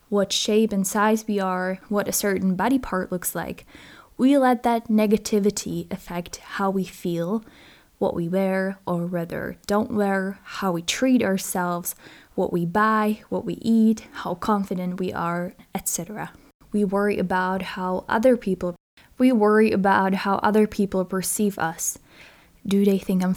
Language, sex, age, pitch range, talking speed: English, female, 10-29, 185-215 Hz, 155 wpm